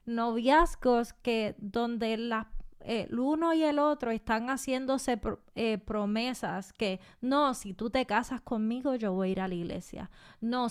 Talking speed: 150 wpm